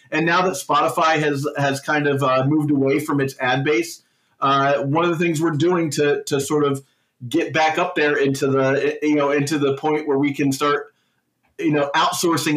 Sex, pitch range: male, 140-170 Hz